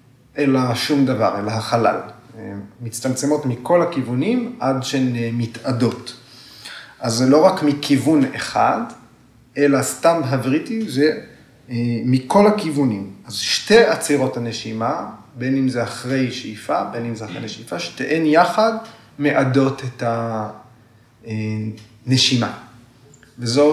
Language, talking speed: Hebrew, 110 wpm